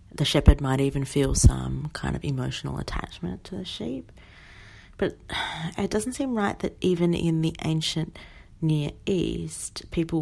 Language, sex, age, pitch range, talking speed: English, female, 40-59, 120-170 Hz, 155 wpm